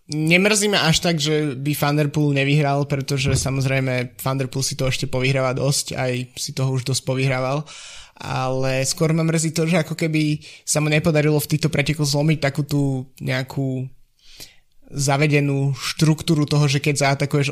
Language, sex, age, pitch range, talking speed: Slovak, male, 20-39, 135-150 Hz, 160 wpm